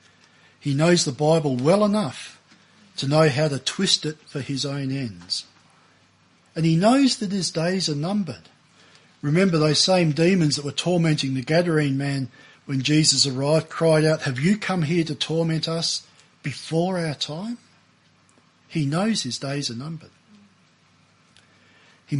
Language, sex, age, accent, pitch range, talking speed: English, male, 50-69, Australian, 130-165 Hz, 150 wpm